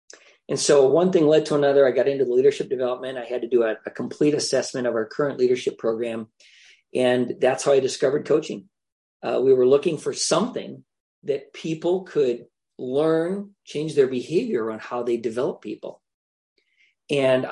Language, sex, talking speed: English, male, 175 wpm